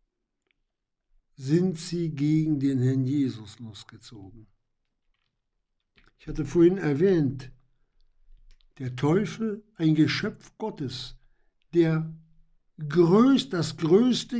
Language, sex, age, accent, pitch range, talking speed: German, male, 60-79, German, 125-180 Hz, 80 wpm